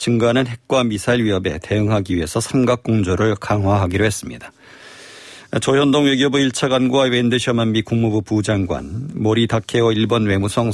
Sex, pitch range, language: male, 105-130 Hz, Korean